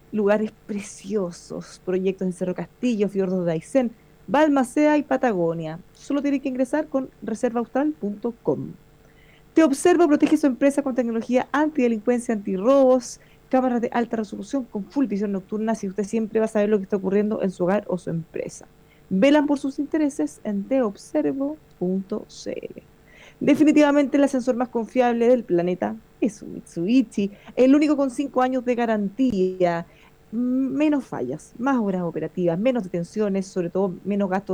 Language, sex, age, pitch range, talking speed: Spanish, female, 30-49, 190-265 Hz, 150 wpm